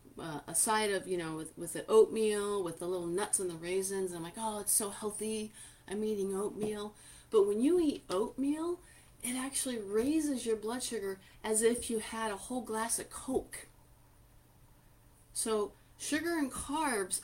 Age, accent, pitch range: 40-59, American, 175-225 Hz